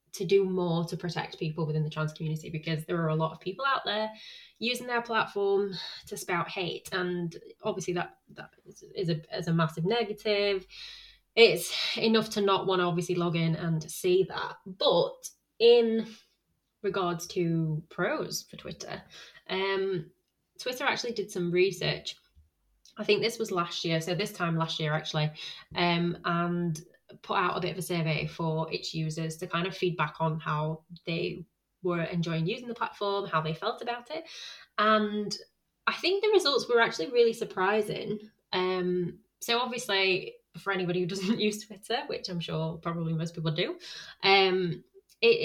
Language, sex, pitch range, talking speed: English, female, 170-210 Hz, 170 wpm